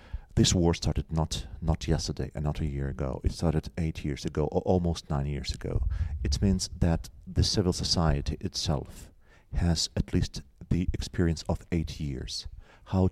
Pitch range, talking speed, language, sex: 80-90 Hz, 170 wpm, Swedish, male